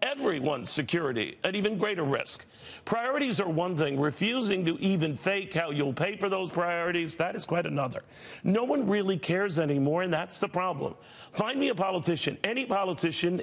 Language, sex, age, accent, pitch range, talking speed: English, male, 50-69, American, 165-205 Hz, 175 wpm